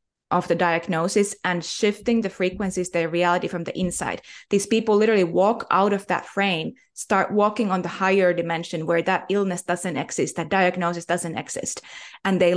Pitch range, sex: 170-200 Hz, female